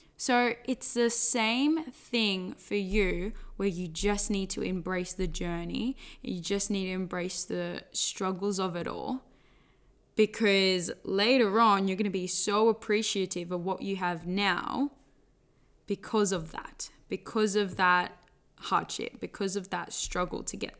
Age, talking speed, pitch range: 10-29, 145 wpm, 185-225 Hz